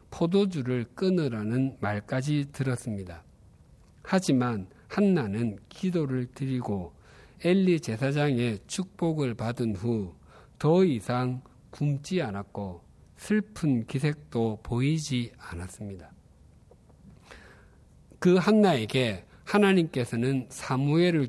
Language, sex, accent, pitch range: Korean, male, native, 105-160 Hz